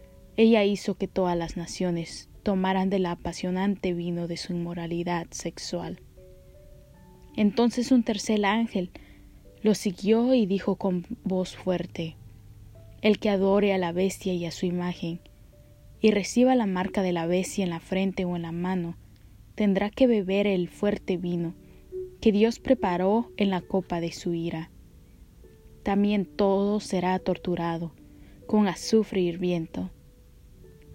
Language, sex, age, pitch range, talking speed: Spanish, female, 20-39, 175-210 Hz, 140 wpm